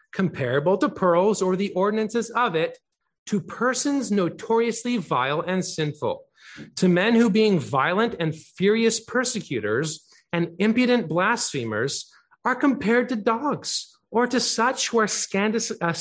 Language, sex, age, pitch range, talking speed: English, male, 30-49, 140-200 Hz, 130 wpm